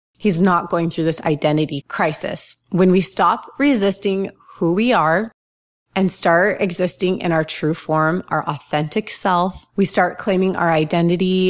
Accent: American